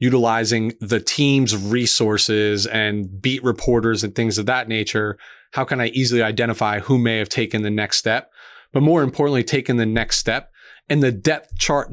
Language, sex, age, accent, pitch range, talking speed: English, male, 30-49, American, 115-135 Hz, 175 wpm